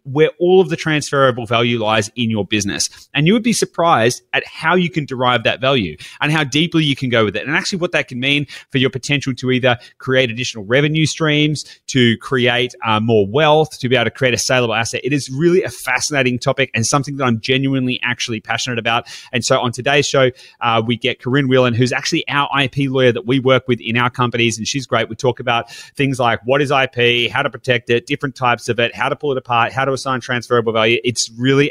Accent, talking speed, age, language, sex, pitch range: Australian, 235 wpm, 30-49, English, male, 115-140 Hz